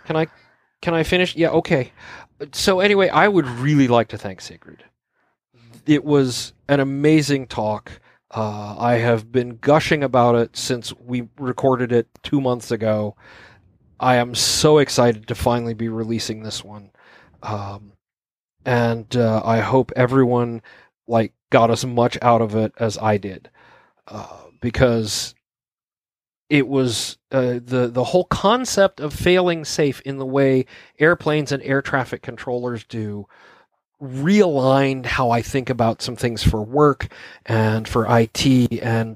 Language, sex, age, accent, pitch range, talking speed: English, male, 40-59, American, 115-140 Hz, 145 wpm